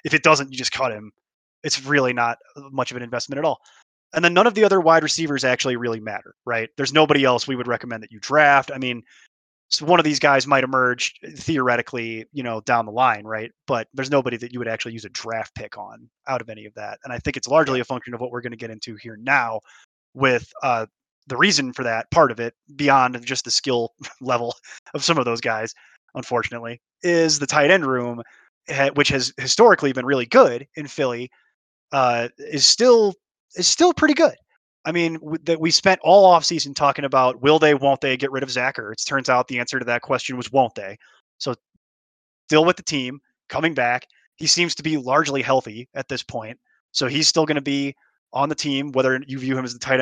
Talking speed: 225 wpm